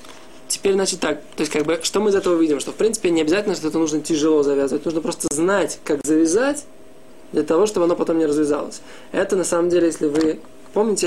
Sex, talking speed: male, 215 wpm